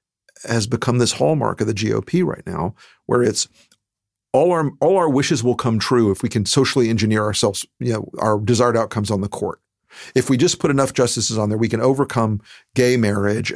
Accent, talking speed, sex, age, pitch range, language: American, 205 wpm, male, 50-69, 105-125 Hz, English